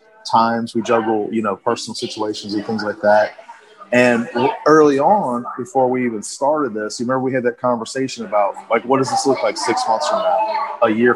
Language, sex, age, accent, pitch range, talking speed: English, male, 40-59, American, 115-185 Hz, 205 wpm